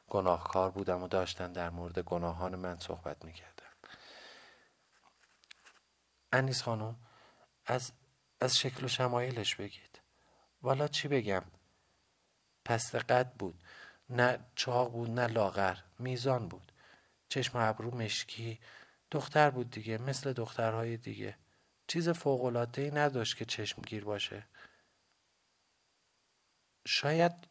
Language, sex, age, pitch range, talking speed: Persian, male, 50-69, 100-130 Hz, 105 wpm